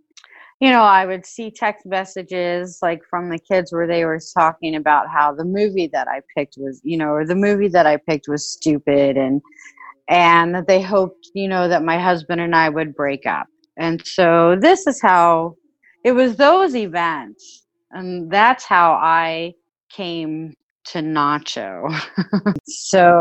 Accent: American